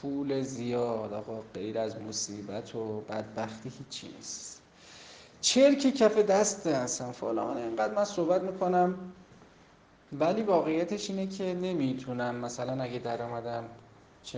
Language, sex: Persian, male